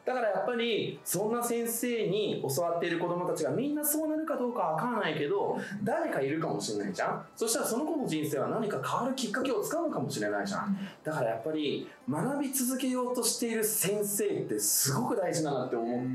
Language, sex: Japanese, male